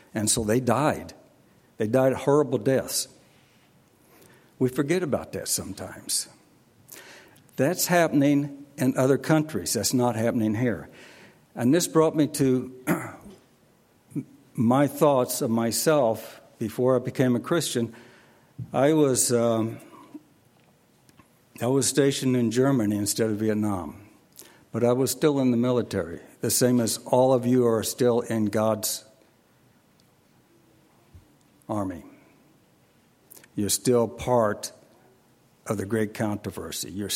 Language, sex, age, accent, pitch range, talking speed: English, male, 60-79, American, 110-135 Hz, 115 wpm